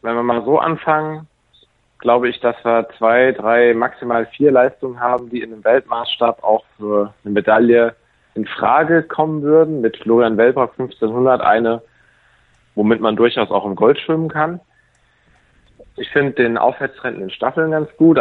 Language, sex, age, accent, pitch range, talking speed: German, male, 40-59, German, 110-130 Hz, 160 wpm